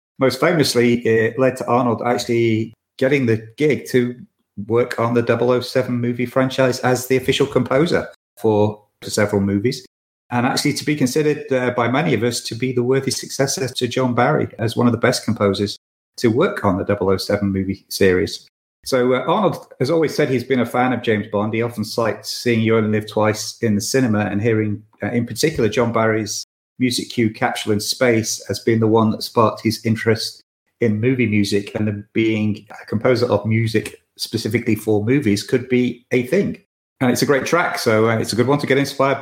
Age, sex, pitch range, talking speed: 40-59, male, 105-130 Hz, 195 wpm